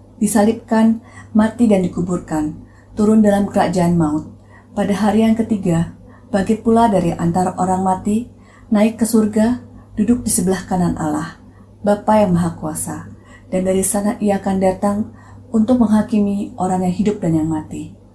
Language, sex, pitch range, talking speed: Indonesian, female, 155-205 Hz, 145 wpm